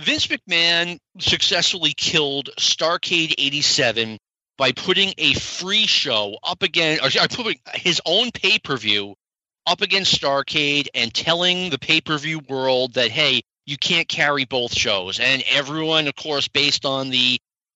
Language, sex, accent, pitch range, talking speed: English, male, American, 130-175 Hz, 135 wpm